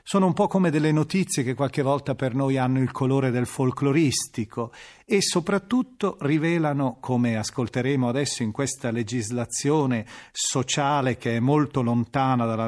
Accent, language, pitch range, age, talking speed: native, Italian, 120-160 Hz, 40-59, 145 wpm